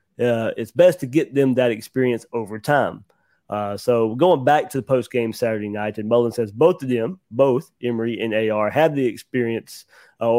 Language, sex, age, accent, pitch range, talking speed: English, male, 30-49, American, 110-135 Hz, 195 wpm